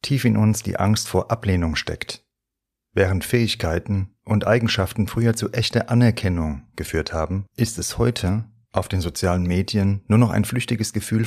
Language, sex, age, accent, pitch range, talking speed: German, male, 40-59, German, 95-110 Hz, 160 wpm